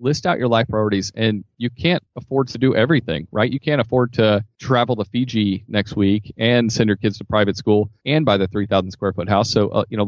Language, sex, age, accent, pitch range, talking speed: English, male, 30-49, American, 105-125 Hz, 240 wpm